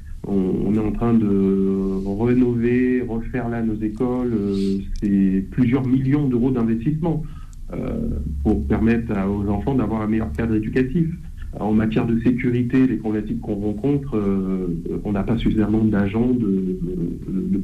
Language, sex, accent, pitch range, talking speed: French, male, French, 100-125 Hz, 140 wpm